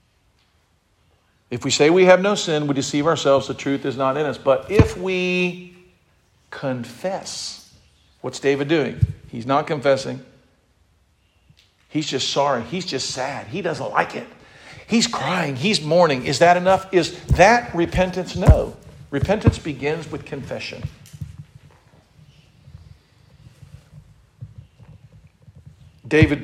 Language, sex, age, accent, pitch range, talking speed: English, male, 50-69, American, 120-145 Hz, 120 wpm